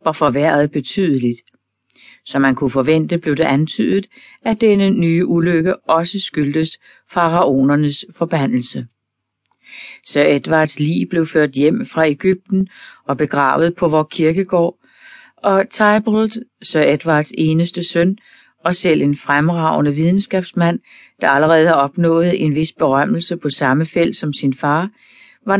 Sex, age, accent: female, 40-59, native